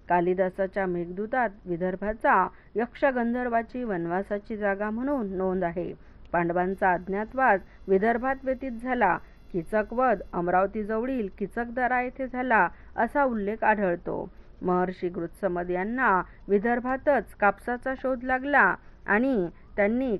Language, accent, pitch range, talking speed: Marathi, native, 185-245 Hz, 90 wpm